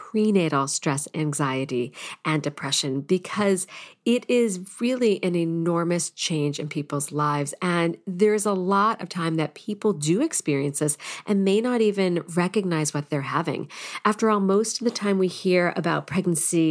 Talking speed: 160 wpm